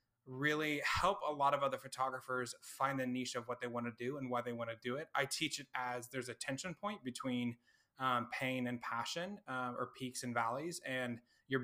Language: English